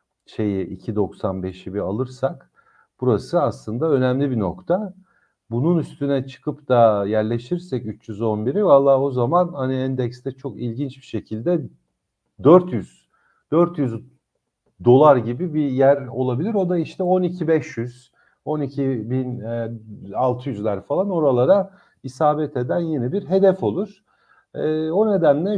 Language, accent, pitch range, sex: Turkish, native, 120-175 Hz, male